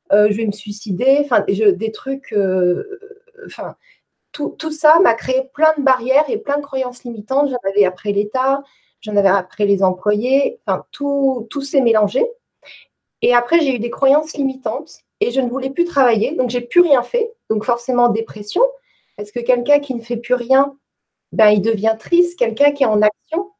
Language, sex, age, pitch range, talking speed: French, female, 30-49, 220-300 Hz, 185 wpm